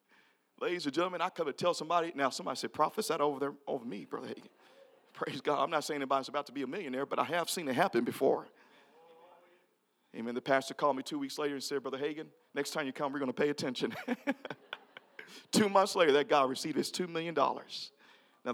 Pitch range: 155-195 Hz